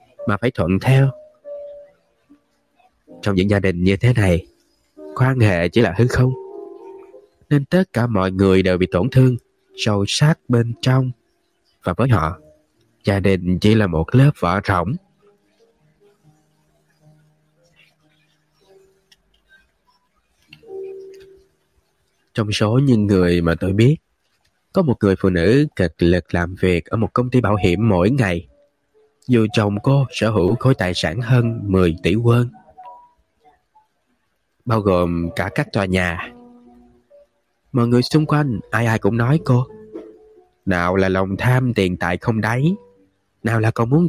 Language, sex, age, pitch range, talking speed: Vietnamese, male, 20-39, 95-155 Hz, 140 wpm